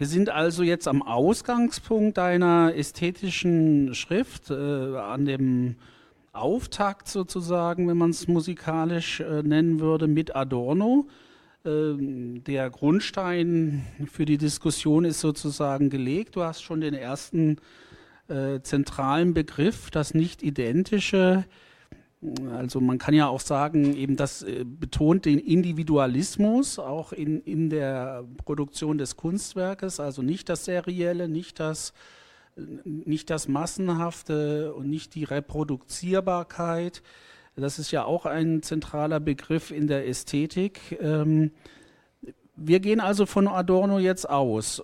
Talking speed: 120 wpm